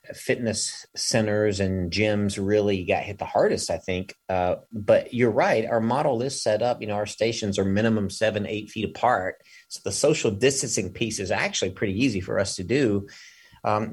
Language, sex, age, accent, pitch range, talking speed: English, male, 30-49, American, 95-115 Hz, 190 wpm